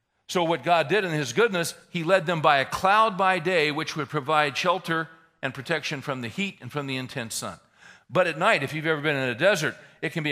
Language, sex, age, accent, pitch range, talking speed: English, male, 50-69, American, 135-180 Hz, 245 wpm